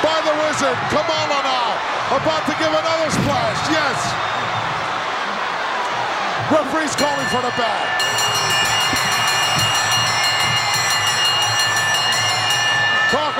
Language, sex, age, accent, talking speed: English, male, 50-69, American, 75 wpm